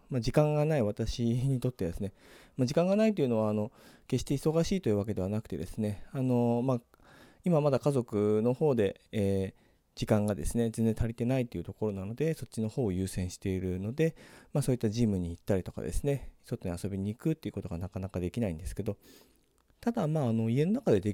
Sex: male